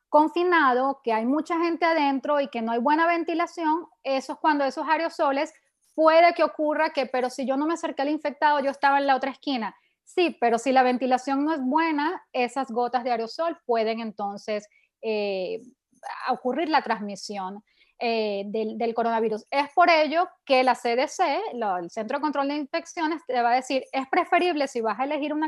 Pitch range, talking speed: 230-300 Hz, 190 wpm